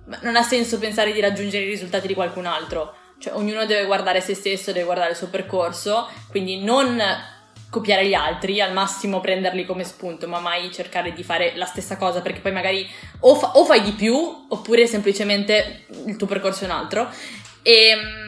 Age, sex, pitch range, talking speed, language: 20-39, female, 175-215 Hz, 185 wpm, Italian